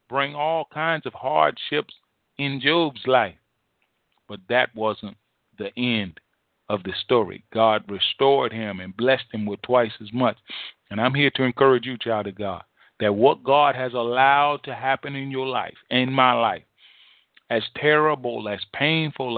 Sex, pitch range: male, 110-140 Hz